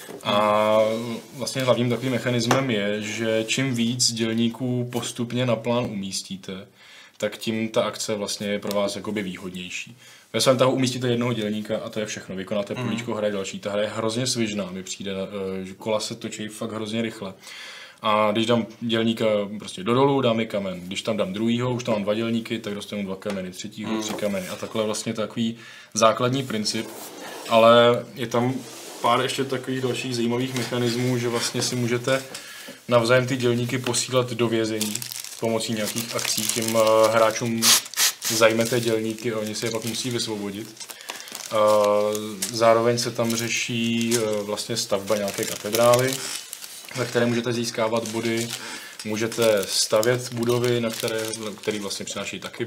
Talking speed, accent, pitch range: 155 wpm, native, 105-120 Hz